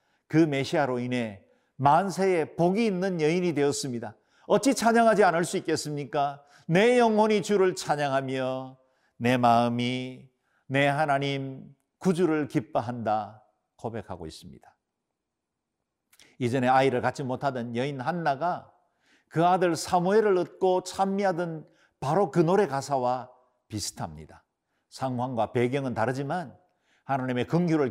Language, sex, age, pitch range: Korean, male, 50-69, 125-175 Hz